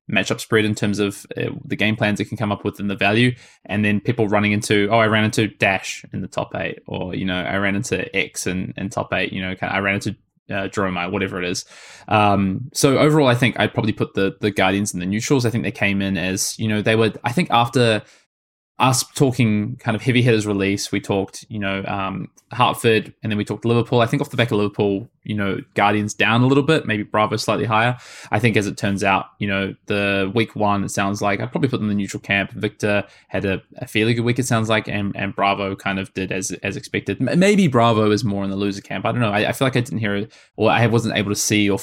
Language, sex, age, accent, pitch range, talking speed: English, male, 20-39, Australian, 100-115 Hz, 260 wpm